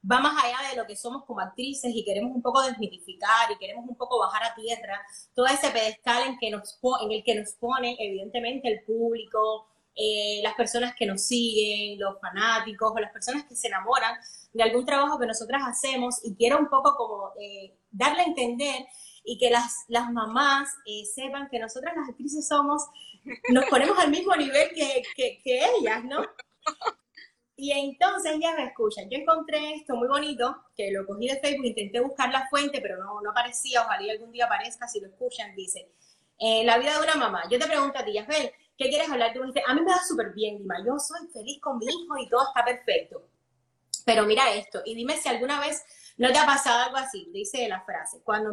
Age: 20-39